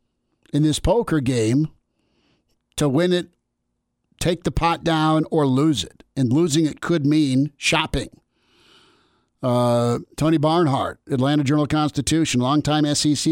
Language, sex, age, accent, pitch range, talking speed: English, male, 50-69, American, 135-160 Hz, 120 wpm